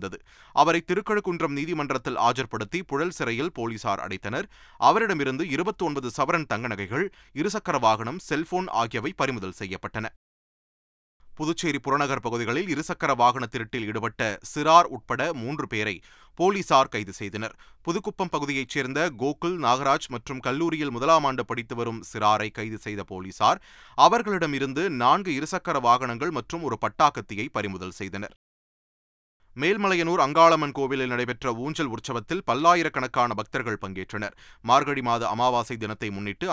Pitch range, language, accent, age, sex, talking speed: 110-160 Hz, Tamil, native, 30-49, male, 120 wpm